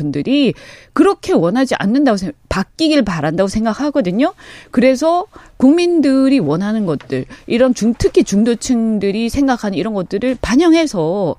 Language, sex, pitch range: Korean, female, 210-315 Hz